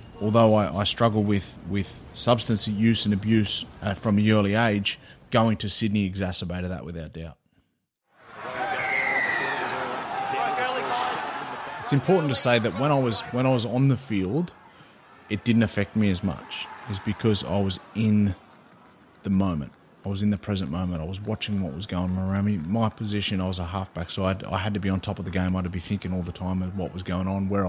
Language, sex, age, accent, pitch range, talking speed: English, male, 30-49, Australian, 95-110 Hz, 205 wpm